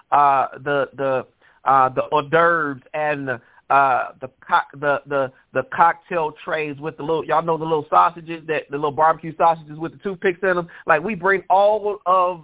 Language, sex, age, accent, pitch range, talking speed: English, male, 30-49, American, 145-175 Hz, 195 wpm